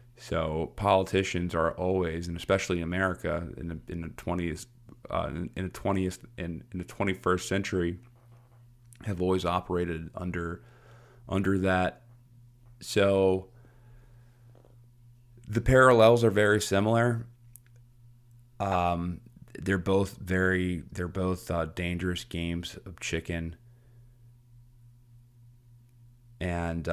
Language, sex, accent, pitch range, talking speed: English, male, American, 90-120 Hz, 105 wpm